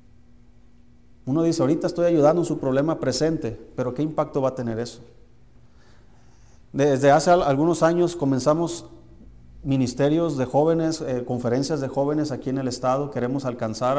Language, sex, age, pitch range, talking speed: Spanish, male, 40-59, 120-150 Hz, 145 wpm